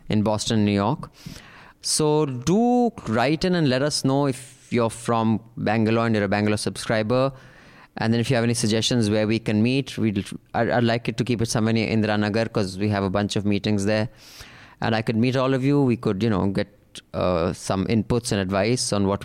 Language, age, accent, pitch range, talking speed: English, 20-39, Indian, 110-140 Hz, 220 wpm